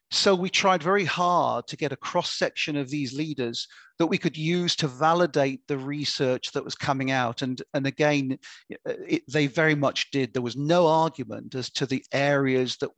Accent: British